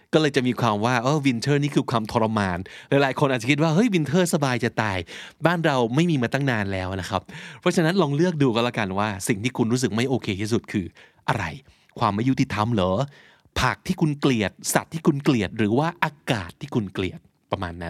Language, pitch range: Thai, 115-165 Hz